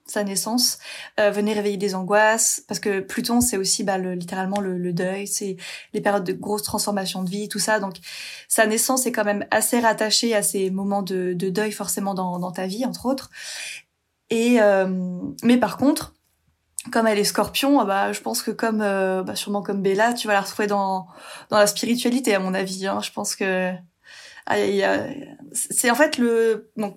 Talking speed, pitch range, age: 205 wpm, 195-235 Hz, 20-39